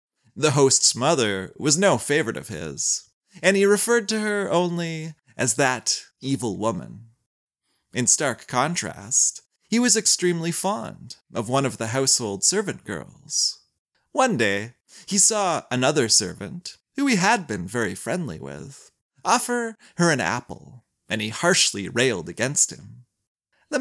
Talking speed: 140 wpm